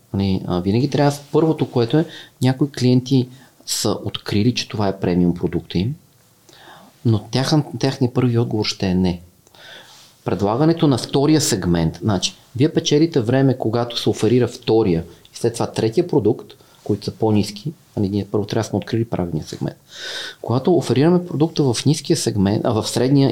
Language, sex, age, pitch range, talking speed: Bulgarian, male, 40-59, 105-140 Hz, 150 wpm